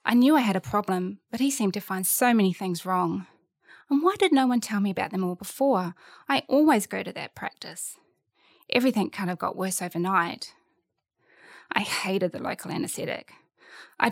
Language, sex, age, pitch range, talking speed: English, female, 20-39, 185-240 Hz, 185 wpm